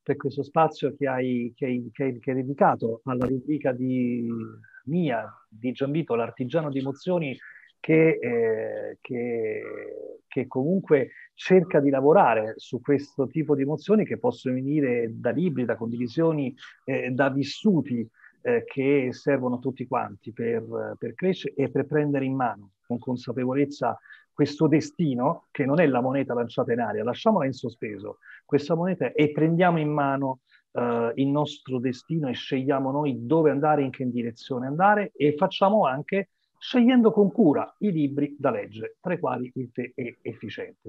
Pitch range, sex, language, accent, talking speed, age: 130-190 Hz, male, Italian, native, 155 wpm, 30-49